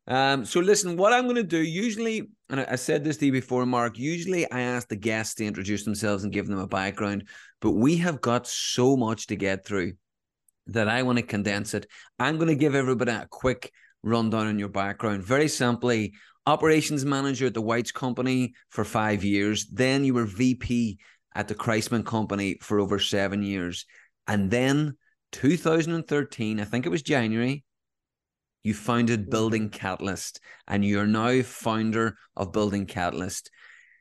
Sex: male